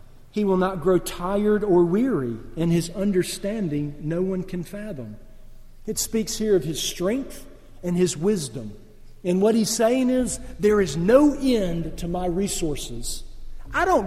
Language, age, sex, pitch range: English, 50-69, male, 125-200 Hz